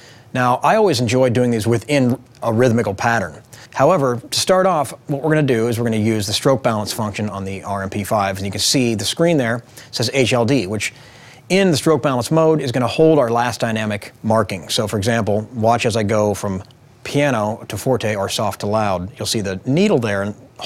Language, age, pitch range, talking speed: English, 40-59, 110-140 Hz, 210 wpm